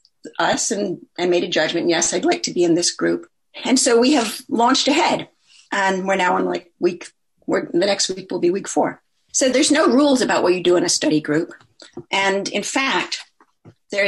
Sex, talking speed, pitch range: female, 210 wpm, 170-265 Hz